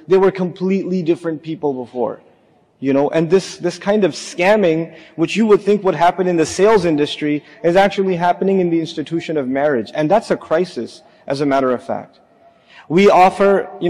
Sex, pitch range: male, 155-190 Hz